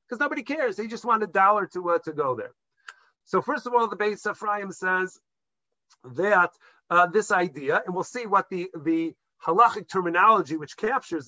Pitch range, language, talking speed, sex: 170-220 Hz, English, 185 wpm, male